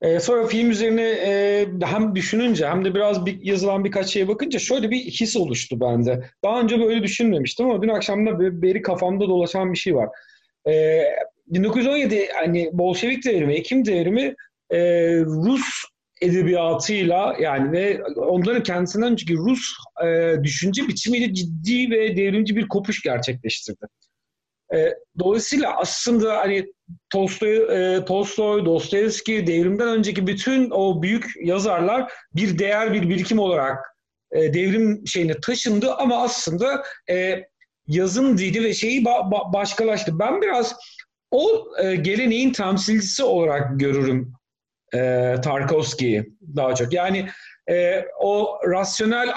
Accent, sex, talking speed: native, male, 130 wpm